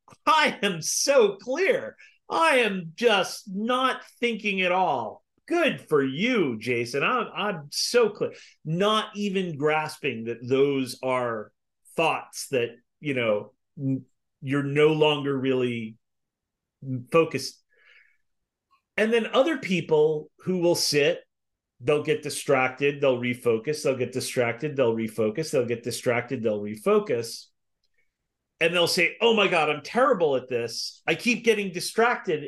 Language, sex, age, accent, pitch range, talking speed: English, male, 40-59, American, 145-205 Hz, 140 wpm